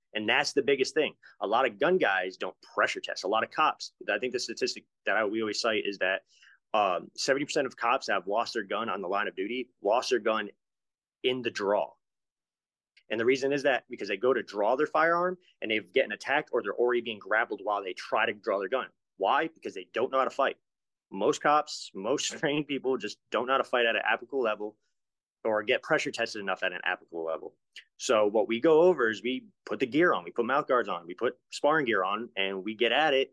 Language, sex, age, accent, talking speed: English, male, 30-49, American, 240 wpm